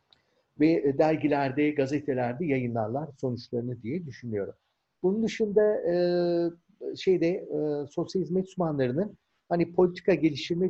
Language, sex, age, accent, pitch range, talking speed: Turkish, male, 50-69, native, 140-185 Hz, 95 wpm